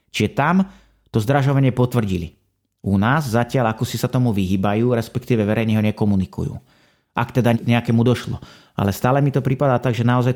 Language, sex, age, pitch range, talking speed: Slovak, male, 30-49, 110-130 Hz, 170 wpm